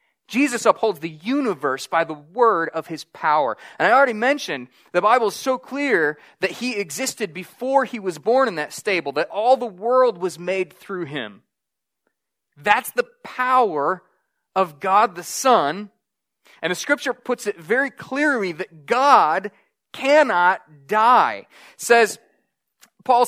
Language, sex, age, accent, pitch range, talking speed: English, male, 30-49, American, 175-240 Hz, 145 wpm